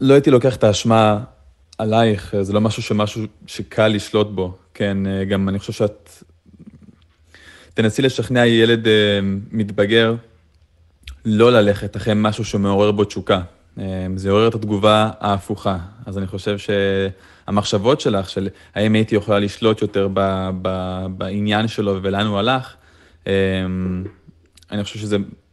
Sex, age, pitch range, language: male, 20-39, 95-110 Hz, Hebrew